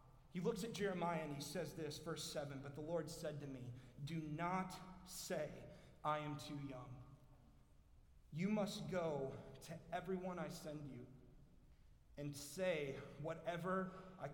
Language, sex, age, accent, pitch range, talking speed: English, male, 30-49, American, 145-170 Hz, 145 wpm